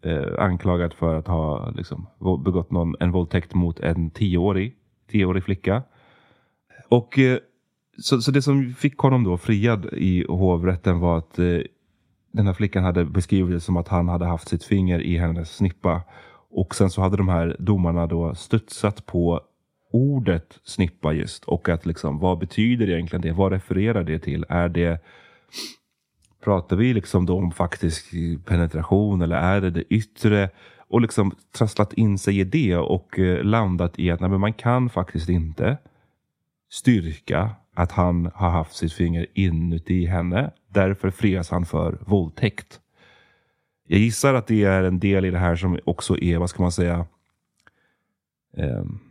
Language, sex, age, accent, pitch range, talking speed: Swedish, male, 30-49, native, 85-105 Hz, 165 wpm